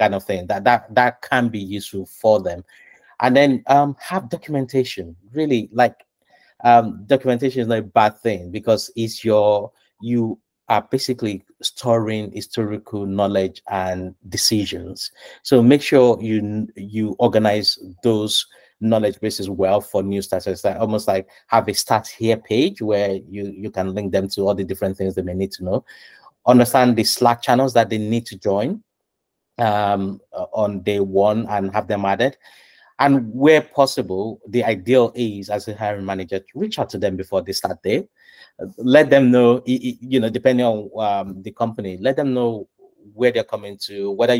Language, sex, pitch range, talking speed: English, male, 100-130 Hz, 170 wpm